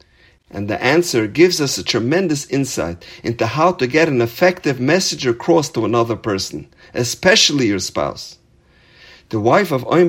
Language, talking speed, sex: English, 155 wpm, male